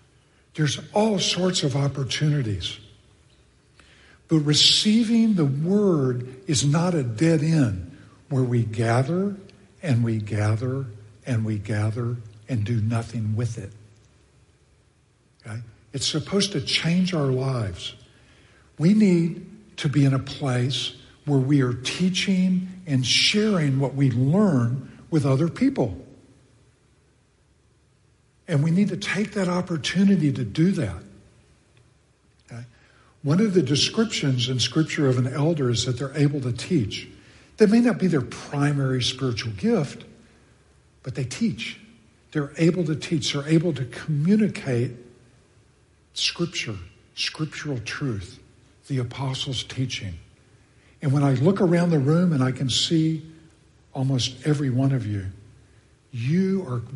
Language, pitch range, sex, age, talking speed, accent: English, 120-165 Hz, male, 60-79, 125 wpm, American